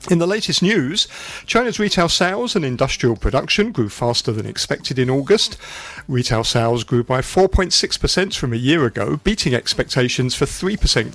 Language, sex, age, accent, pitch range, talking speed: English, male, 50-69, British, 120-160 Hz, 155 wpm